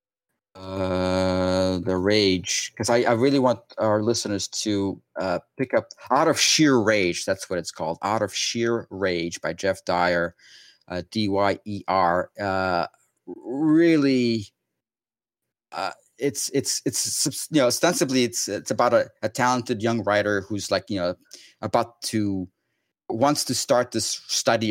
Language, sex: English, male